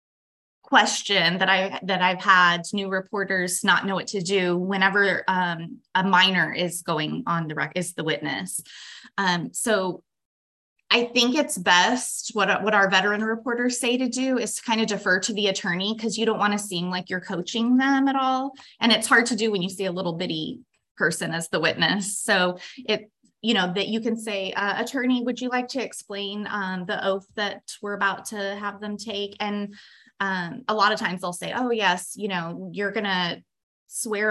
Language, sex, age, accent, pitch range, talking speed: English, female, 20-39, American, 190-235 Hz, 200 wpm